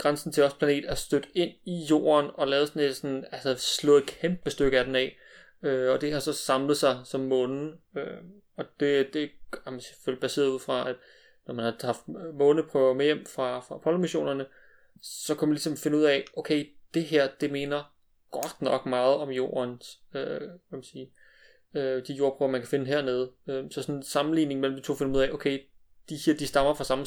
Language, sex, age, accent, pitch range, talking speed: Danish, male, 30-49, native, 130-150 Hz, 210 wpm